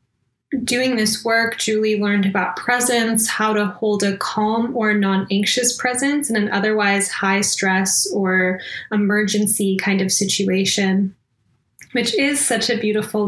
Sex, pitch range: female, 190-215 Hz